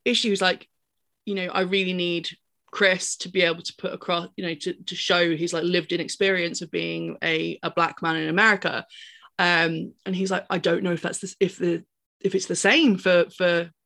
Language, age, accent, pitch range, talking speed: English, 20-39, British, 165-205 Hz, 215 wpm